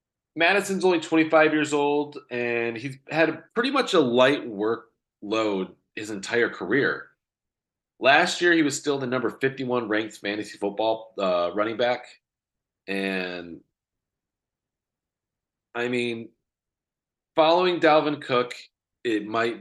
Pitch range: 105-155 Hz